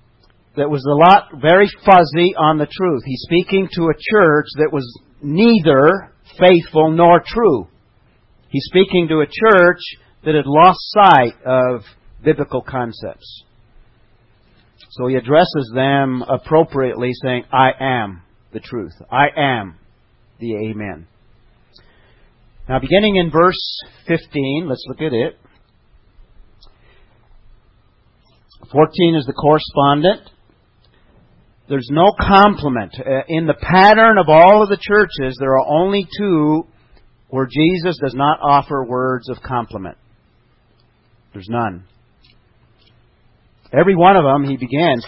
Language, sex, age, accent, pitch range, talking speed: English, male, 50-69, American, 120-155 Hz, 120 wpm